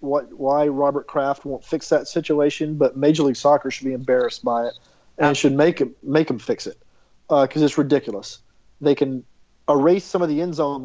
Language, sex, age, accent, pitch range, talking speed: English, male, 40-59, American, 135-160 Hz, 205 wpm